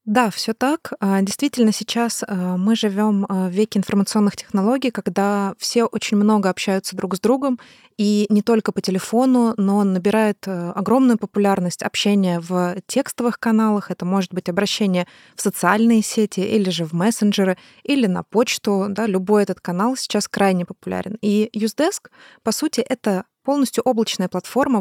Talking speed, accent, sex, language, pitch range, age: 150 wpm, native, female, Russian, 195-245 Hz, 20-39